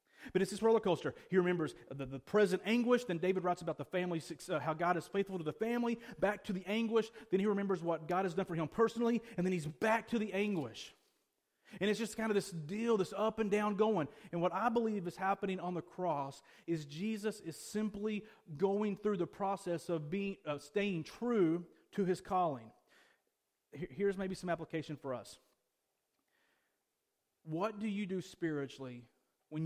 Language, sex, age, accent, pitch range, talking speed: English, male, 30-49, American, 165-215 Hz, 190 wpm